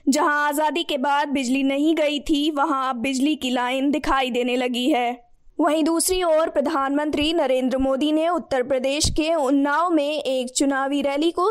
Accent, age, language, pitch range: native, 20-39, Hindi, 260-305 Hz